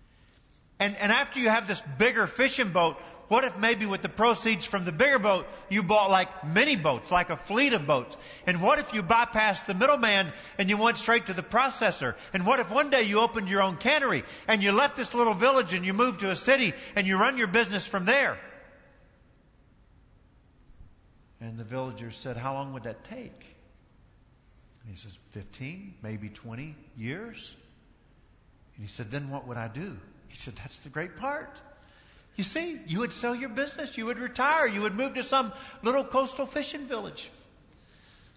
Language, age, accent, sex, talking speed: English, 50-69, American, male, 190 wpm